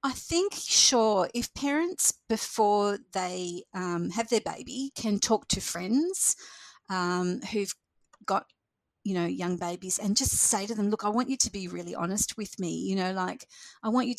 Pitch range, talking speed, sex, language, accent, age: 185-250 Hz, 180 wpm, female, English, Australian, 40-59